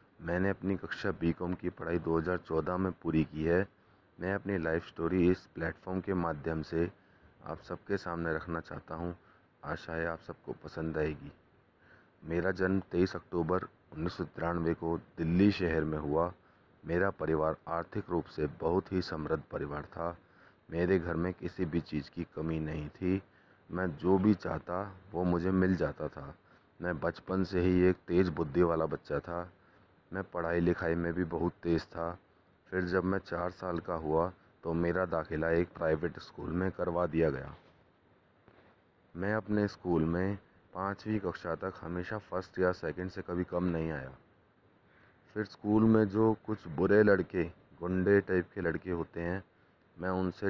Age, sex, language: 30-49, male, Hindi